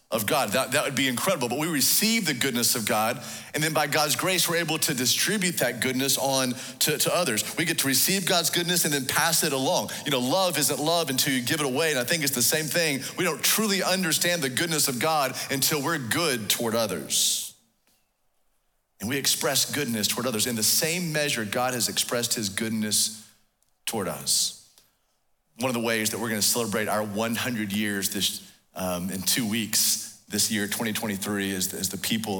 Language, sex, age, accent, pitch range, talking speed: English, male, 40-59, American, 105-145 Hz, 205 wpm